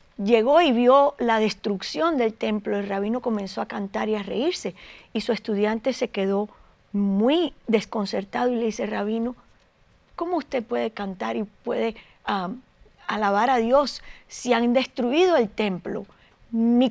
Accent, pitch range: American, 205-265 Hz